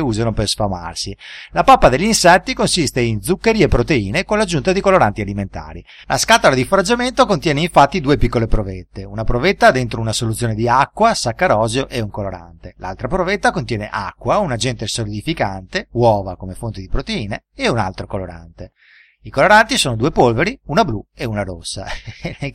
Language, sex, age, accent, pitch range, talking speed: Italian, male, 30-49, native, 105-155 Hz, 170 wpm